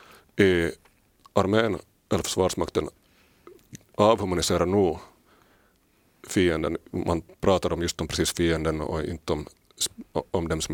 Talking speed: 105 wpm